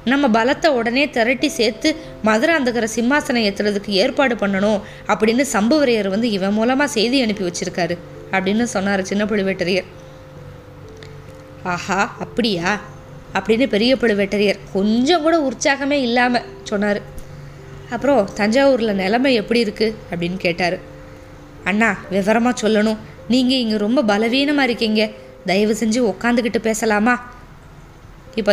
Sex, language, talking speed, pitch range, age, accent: female, Tamil, 110 wpm, 195-250 Hz, 20-39, native